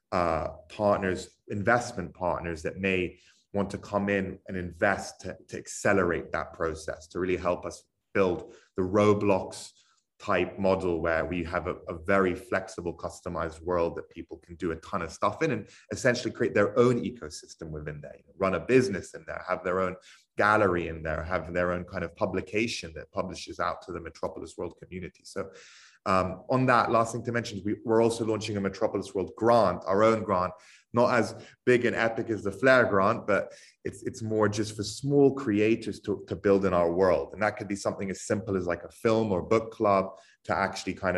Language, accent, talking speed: English, British, 200 wpm